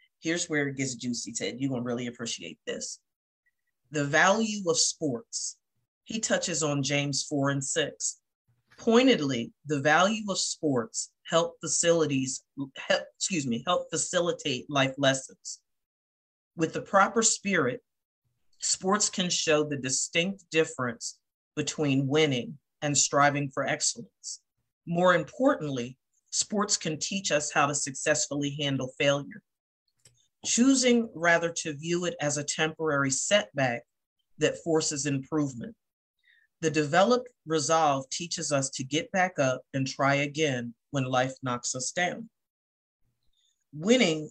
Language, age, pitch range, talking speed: English, 40-59, 135-180 Hz, 125 wpm